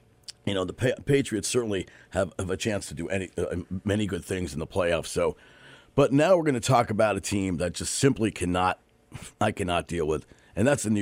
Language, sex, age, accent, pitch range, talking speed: English, male, 50-69, American, 100-155 Hz, 225 wpm